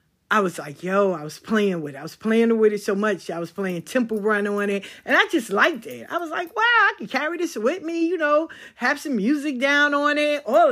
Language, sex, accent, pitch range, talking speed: English, female, American, 195-285 Hz, 265 wpm